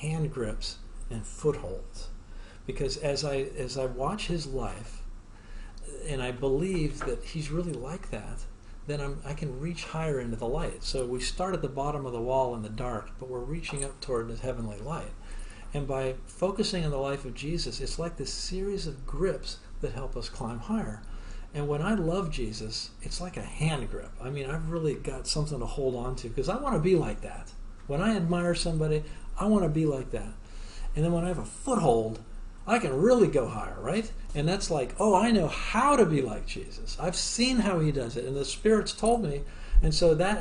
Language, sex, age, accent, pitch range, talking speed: English, male, 50-69, American, 110-160 Hz, 210 wpm